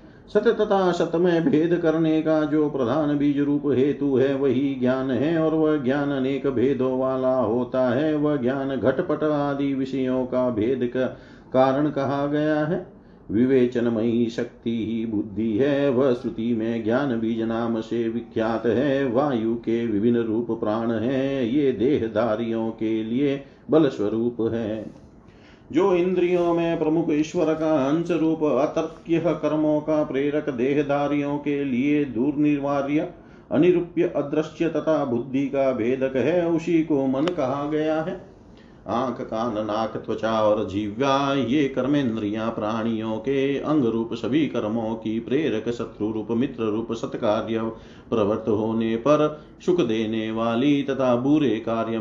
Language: Hindi